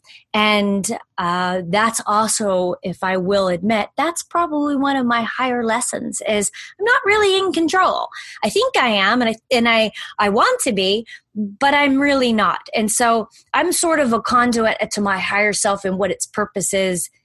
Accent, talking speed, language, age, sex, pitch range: American, 185 wpm, English, 30-49, female, 190-240 Hz